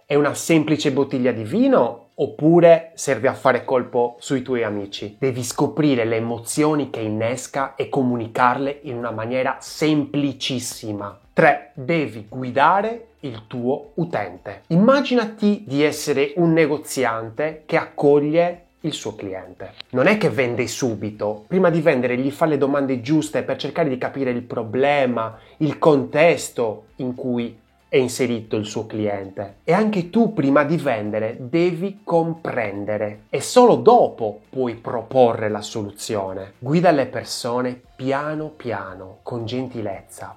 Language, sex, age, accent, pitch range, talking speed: Italian, male, 30-49, native, 110-150 Hz, 135 wpm